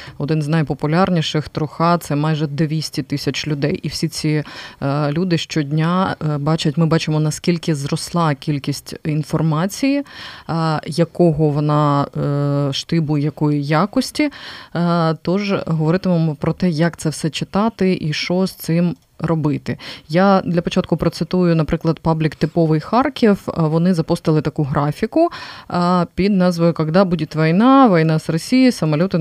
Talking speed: 125 wpm